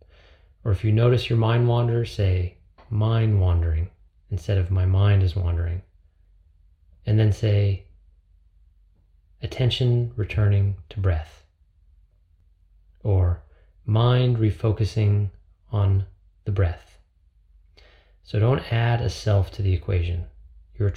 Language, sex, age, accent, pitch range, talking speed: English, male, 30-49, American, 80-105 Hz, 110 wpm